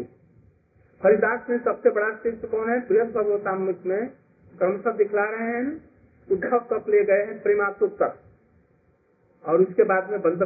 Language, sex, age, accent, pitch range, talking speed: Hindi, male, 50-69, native, 155-230 Hz, 125 wpm